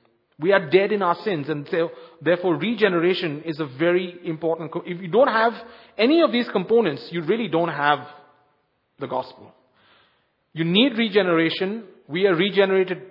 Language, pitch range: English, 150-190 Hz